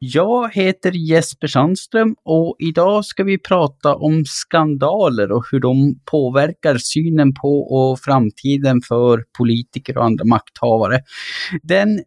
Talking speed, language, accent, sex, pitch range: 125 wpm, Swedish, Norwegian, male, 125-165 Hz